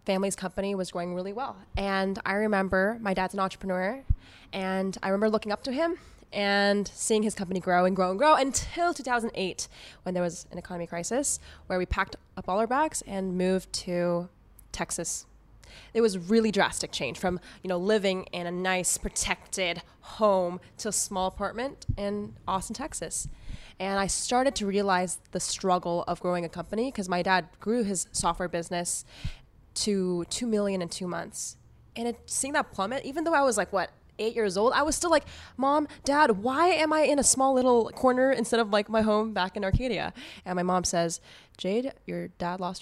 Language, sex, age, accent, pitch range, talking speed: English, female, 20-39, American, 180-230 Hz, 190 wpm